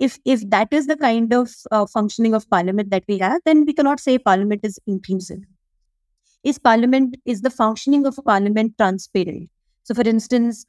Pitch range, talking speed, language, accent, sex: 190-230 Hz, 185 wpm, English, Indian, female